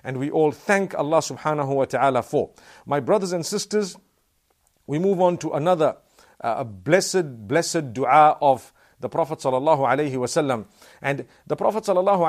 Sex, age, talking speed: male, 50-69, 155 wpm